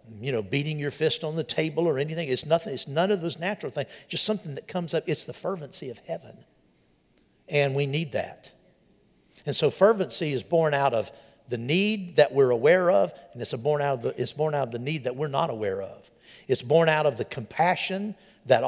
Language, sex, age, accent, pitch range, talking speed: English, male, 60-79, American, 130-175 Hz, 225 wpm